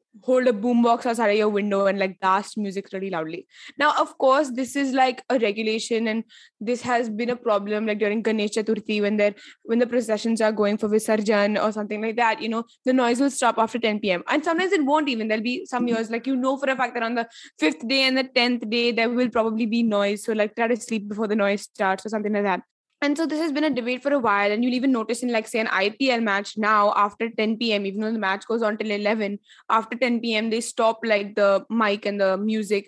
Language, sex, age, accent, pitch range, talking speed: English, female, 20-39, Indian, 210-250 Hz, 245 wpm